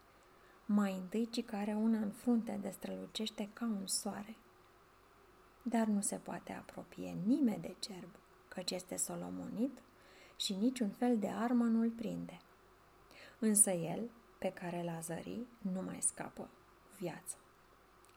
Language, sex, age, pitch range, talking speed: Romanian, female, 20-39, 190-230 Hz, 130 wpm